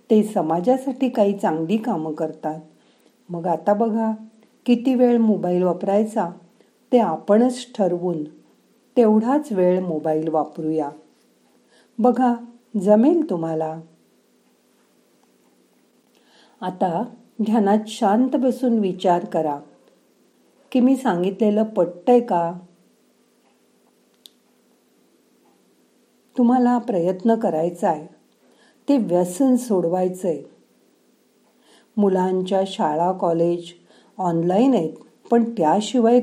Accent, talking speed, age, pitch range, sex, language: native, 75 wpm, 50-69, 170-230 Hz, female, Marathi